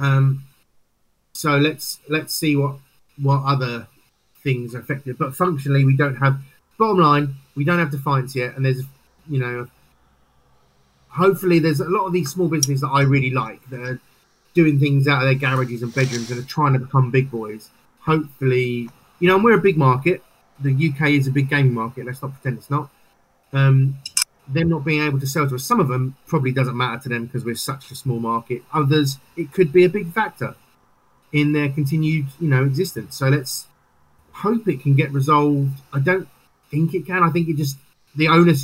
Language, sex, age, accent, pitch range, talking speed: English, male, 30-49, British, 130-150 Hz, 200 wpm